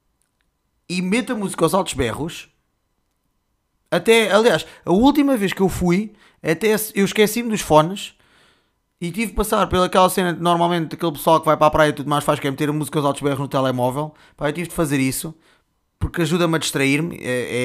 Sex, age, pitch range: male, 20-39, 145-195 Hz